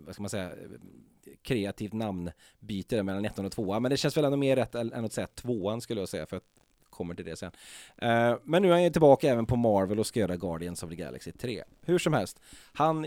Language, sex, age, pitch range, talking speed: English, male, 30-49, 95-125 Hz, 230 wpm